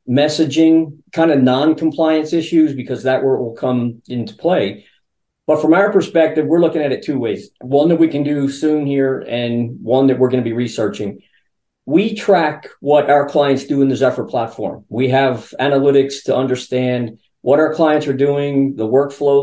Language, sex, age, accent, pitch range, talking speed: English, male, 50-69, American, 130-160 Hz, 175 wpm